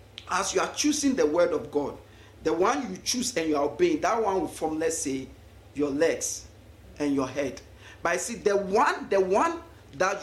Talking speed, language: 205 wpm, English